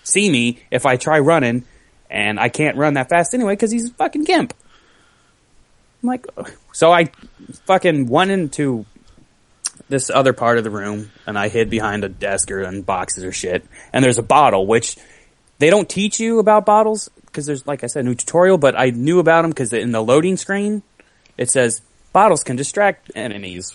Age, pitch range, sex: 20-39, 110-180 Hz, male